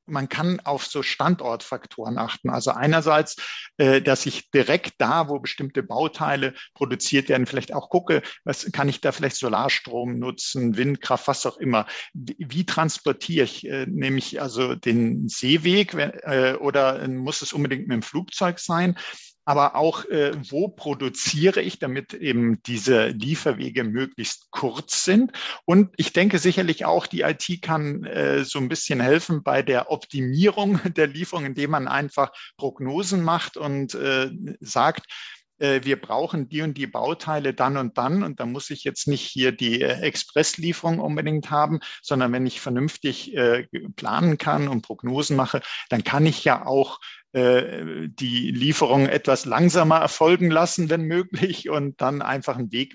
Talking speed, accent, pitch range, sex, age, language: 150 wpm, German, 130-160 Hz, male, 50-69, German